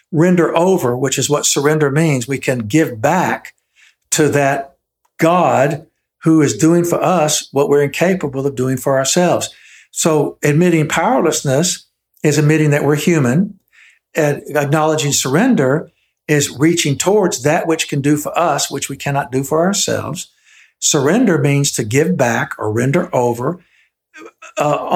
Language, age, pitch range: English, 60-79, 140-170 Hz